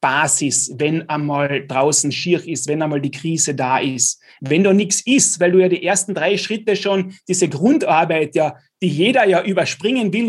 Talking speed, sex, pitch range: 185 wpm, male, 155-205 Hz